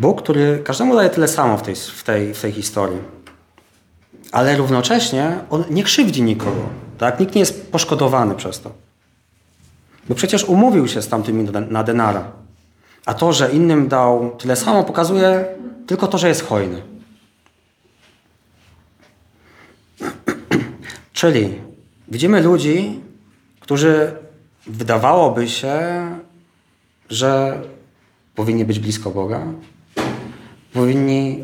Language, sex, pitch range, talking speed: Polish, male, 110-165 Hz, 105 wpm